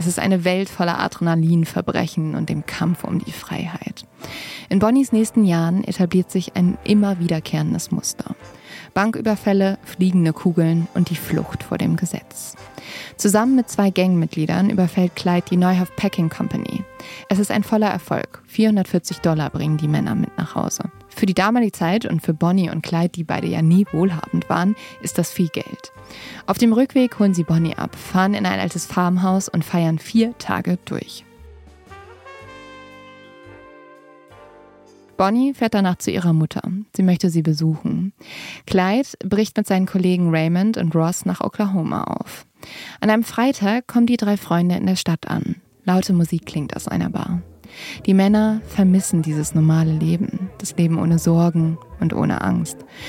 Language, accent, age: German, German, 20-39